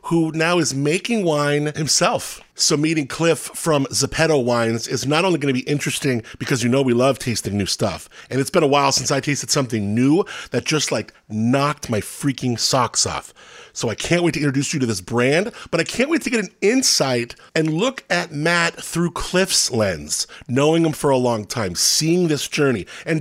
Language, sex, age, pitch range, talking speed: English, male, 40-59, 130-160 Hz, 205 wpm